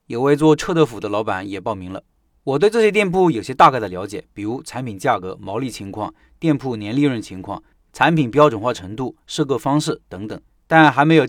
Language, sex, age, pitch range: Chinese, male, 30-49, 115-155 Hz